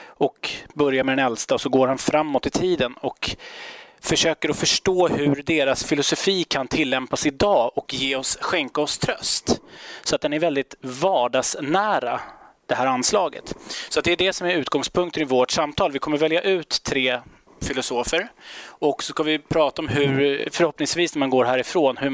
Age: 30-49